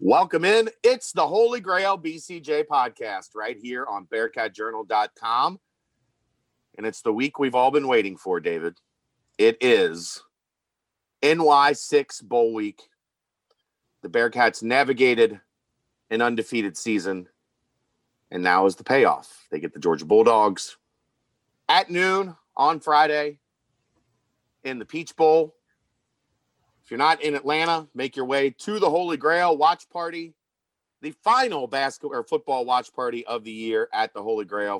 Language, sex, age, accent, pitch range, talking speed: English, male, 40-59, American, 120-165 Hz, 135 wpm